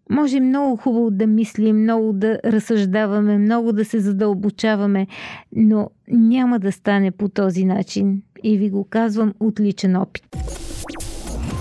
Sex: female